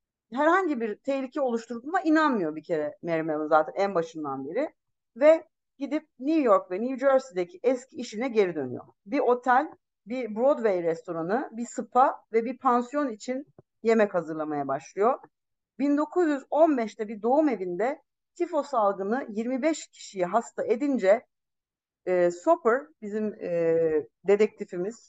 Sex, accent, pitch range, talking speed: female, native, 185-270 Hz, 125 wpm